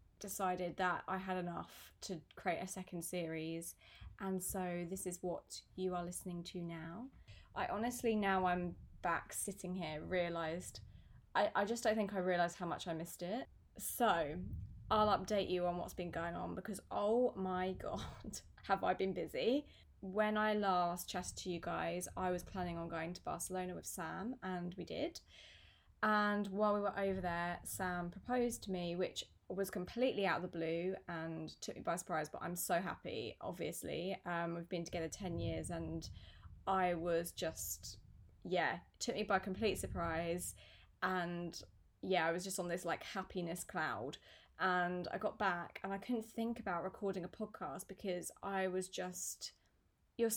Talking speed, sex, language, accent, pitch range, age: 175 wpm, female, English, British, 175-195 Hz, 20-39